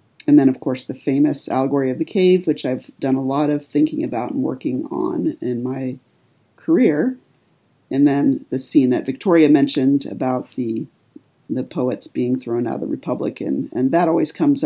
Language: English